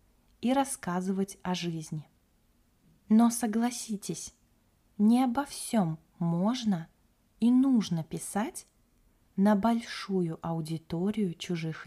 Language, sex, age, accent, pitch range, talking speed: Russian, female, 20-39, native, 170-215 Hz, 85 wpm